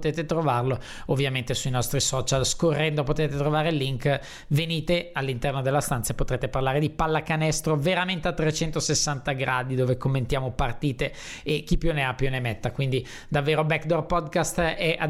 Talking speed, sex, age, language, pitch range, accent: 165 wpm, male, 20-39, Italian, 140-175 Hz, native